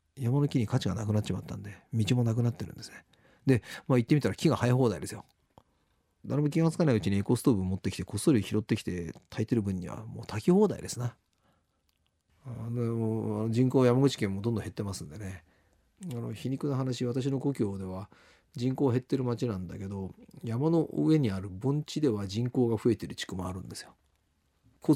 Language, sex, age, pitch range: Japanese, male, 40-59, 95-125 Hz